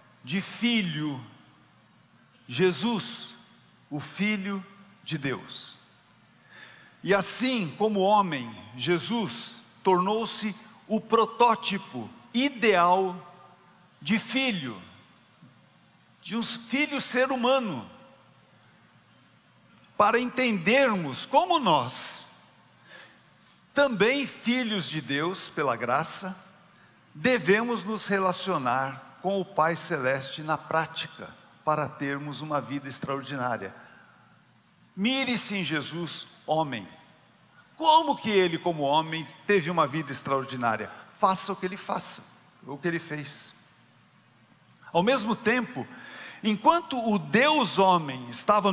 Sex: male